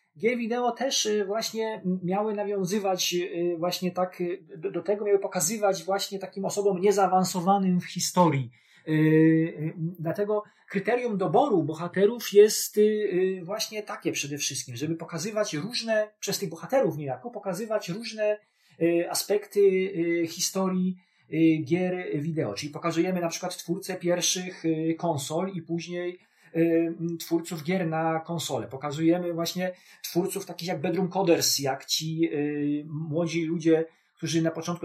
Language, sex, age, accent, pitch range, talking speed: Polish, male, 30-49, native, 160-190 Hz, 115 wpm